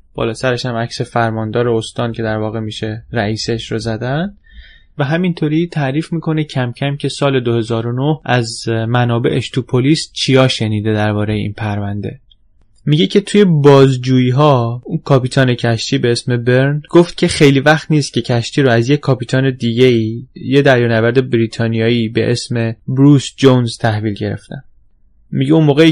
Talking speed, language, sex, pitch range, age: 150 wpm, Persian, male, 115-140 Hz, 20-39